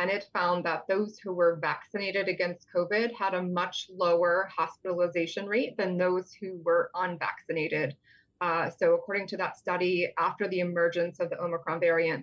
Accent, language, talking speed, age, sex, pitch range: American, English, 165 wpm, 20-39, female, 170-195 Hz